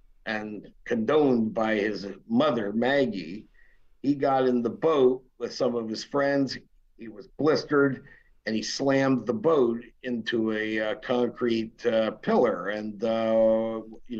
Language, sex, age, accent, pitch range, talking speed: English, male, 50-69, American, 110-130 Hz, 140 wpm